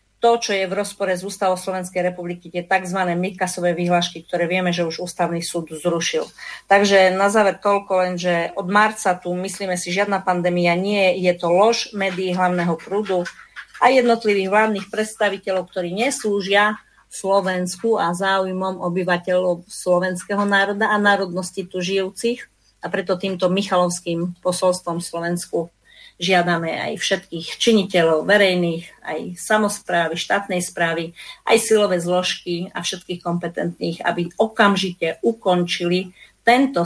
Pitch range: 175-205 Hz